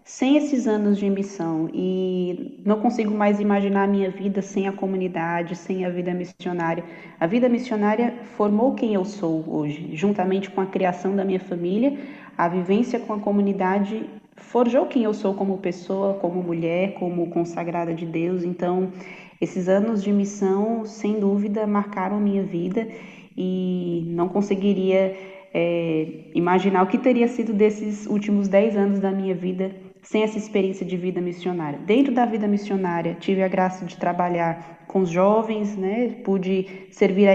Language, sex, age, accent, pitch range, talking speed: Portuguese, female, 20-39, Brazilian, 180-210 Hz, 160 wpm